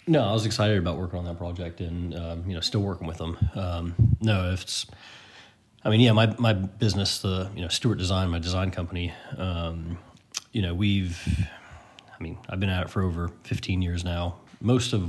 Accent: American